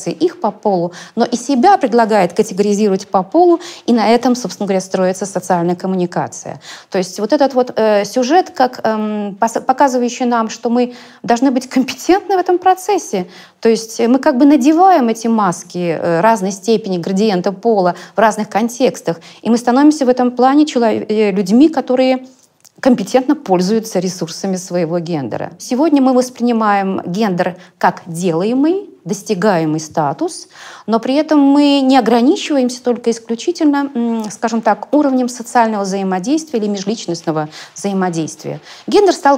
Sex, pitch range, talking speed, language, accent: female, 195-270 Hz, 135 wpm, Russian, native